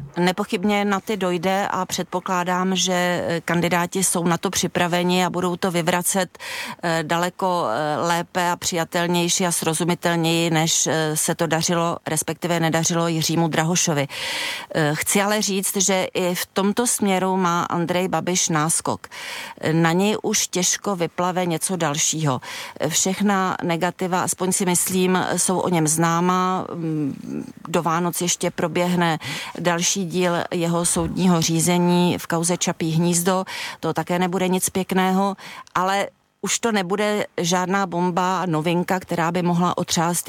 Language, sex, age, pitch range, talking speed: Czech, female, 40-59, 165-185 Hz, 130 wpm